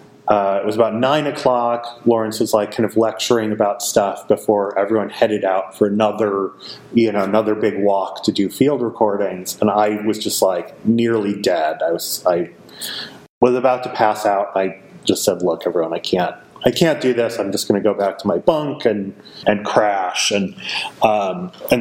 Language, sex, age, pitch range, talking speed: English, male, 30-49, 105-120 Hz, 195 wpm